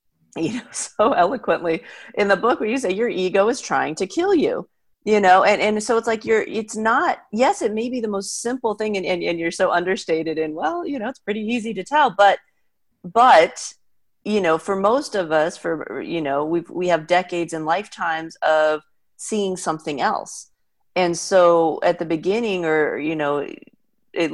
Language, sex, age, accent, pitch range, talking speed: English, female, 40-59, American, 170-220 Hz, 195 wpm